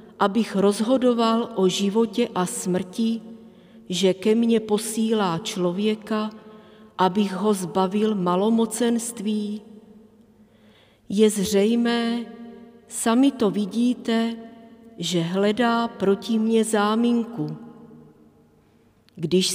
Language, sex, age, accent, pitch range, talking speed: Czech, female, 40-59, native, 190-230 Hz, 80 wpm